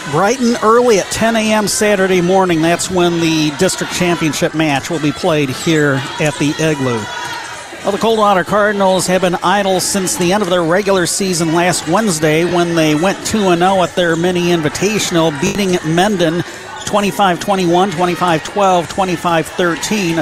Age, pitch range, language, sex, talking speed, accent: 50-69, 165-200 Hz, English, male, 140 wpm, American